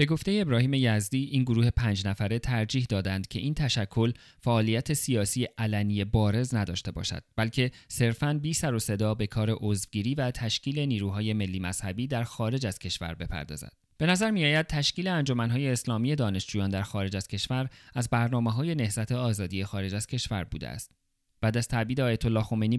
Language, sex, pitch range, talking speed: Persian, male, 105-125 Hz, 170 wpm